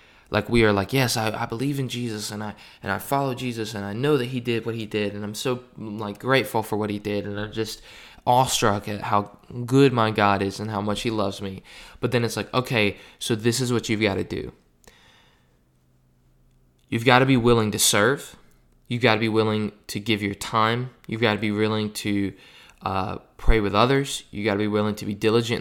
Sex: male